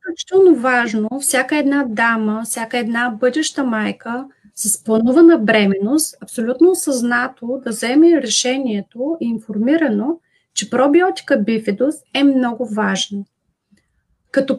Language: Bulgarian